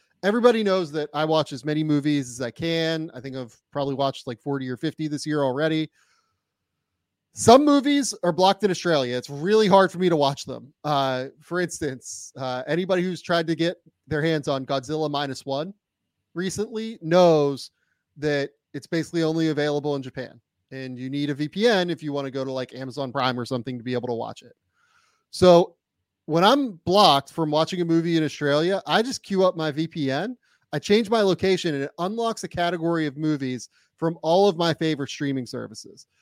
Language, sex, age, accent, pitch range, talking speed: English, male, 30-49, American, 140-185 Hz, 195 wpm